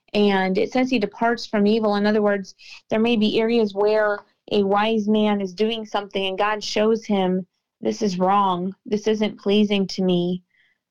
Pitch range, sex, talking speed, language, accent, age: 185-215 Hz, female, 180 wpm, English, American, 30-49